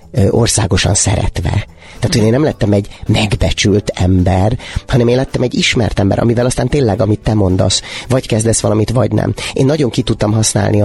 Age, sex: 30-49, male